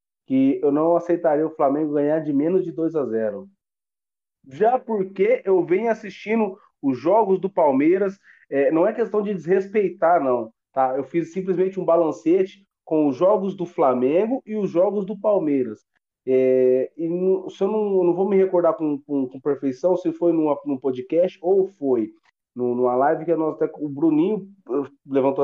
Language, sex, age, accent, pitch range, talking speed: Portuguese, male, 30-49, Brazilian, 160-220 Hz, 175 wpm